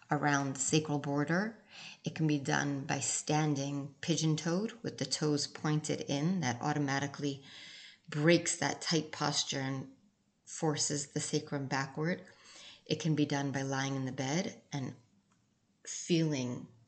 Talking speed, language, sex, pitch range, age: 130 wpm, English, female, 140-160 Hz, 30-49